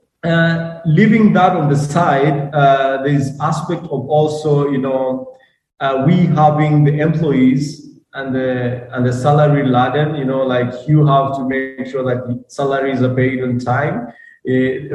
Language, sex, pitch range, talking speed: English, male, 135-155 Hz, 160 wpm